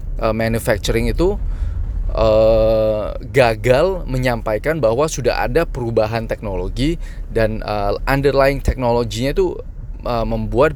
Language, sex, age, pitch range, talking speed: Indonesian, male, 20-39, 105-130 Hz, 100 wpm